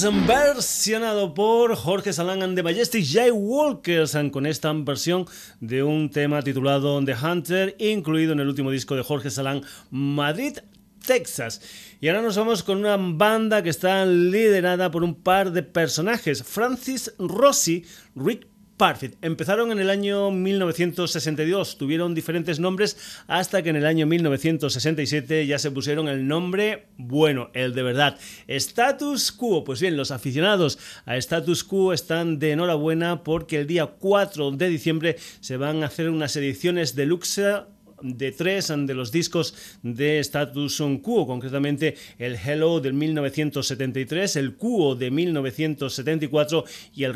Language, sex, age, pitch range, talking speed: Spanish, male, 30-49, 145-195 Hz, 145 wpm